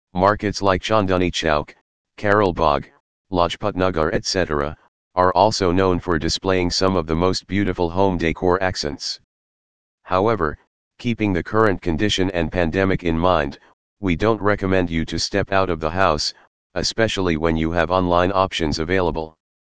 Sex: male